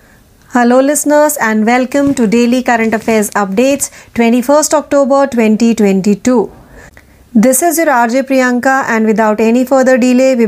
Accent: native